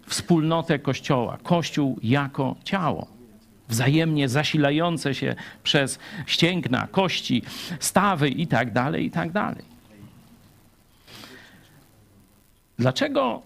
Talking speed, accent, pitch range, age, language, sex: 85 wpm, native, 120-165 Hz, 50-69, Polish, male